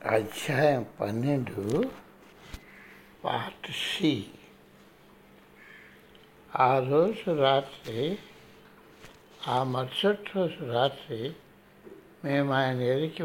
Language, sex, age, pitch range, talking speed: Telugu, male, 60-79, 125-185 Hz, 65 wpm